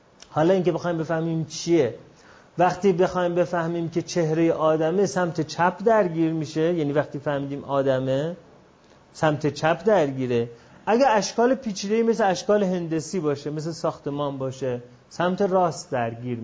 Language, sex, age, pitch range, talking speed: Persian, male, 30-49, 140-195 Hz, 130 wpm